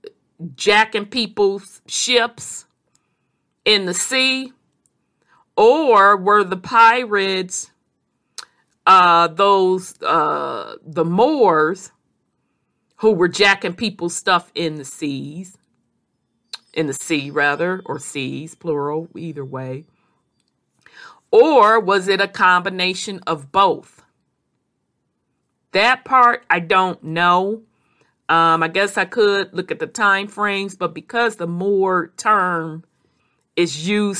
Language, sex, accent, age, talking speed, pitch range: English, female, American, 50-69, 105 wpm, 170-225 Hz